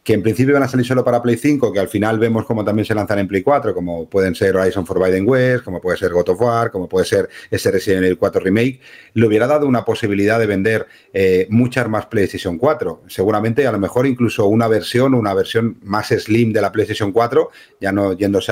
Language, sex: Spanish, male